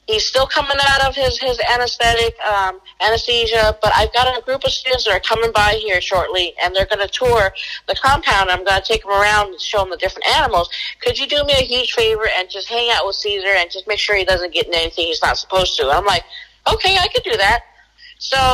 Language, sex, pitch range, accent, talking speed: English, female, 195-260 Hz, American, 245 wpm